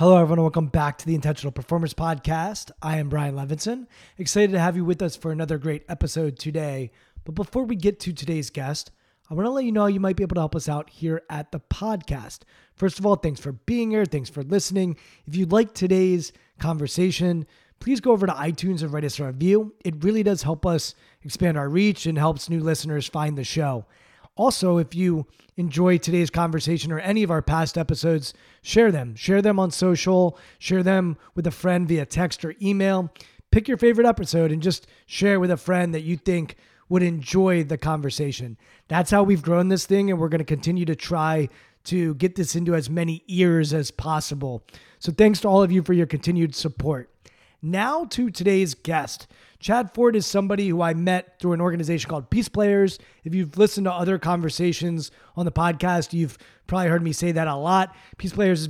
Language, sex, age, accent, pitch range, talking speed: English, male, 20-39, American, 155-185 Hz, 210 wpm